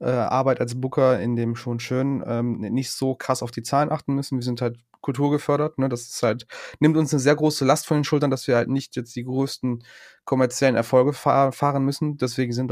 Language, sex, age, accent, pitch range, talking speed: German, male, 30-49, German, 125-145 Hz, 220 wpm